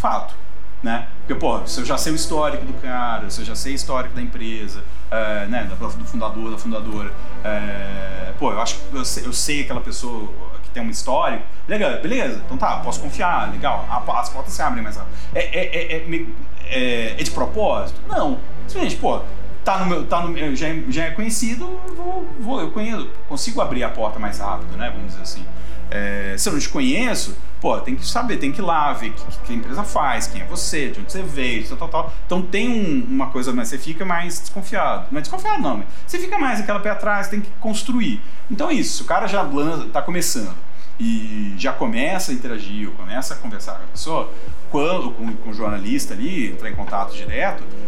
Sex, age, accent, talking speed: male, 40-59, Brazilian, 205 wpm